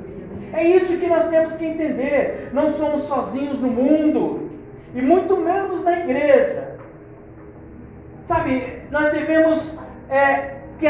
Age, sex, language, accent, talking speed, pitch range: 60-79, male, Portuguese, Brazilian, 115 wpm, 245-320 Hz